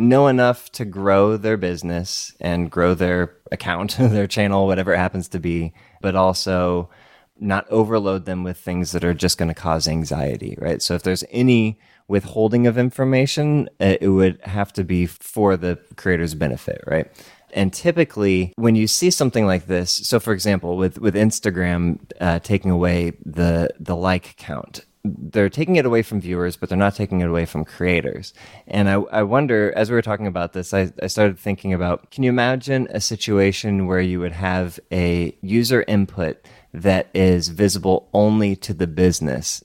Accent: American